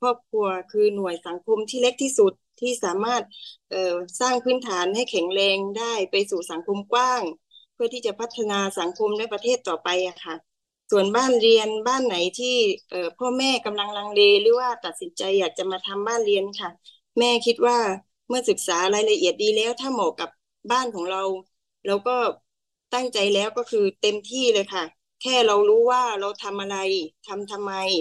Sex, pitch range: female, 190-240 Hz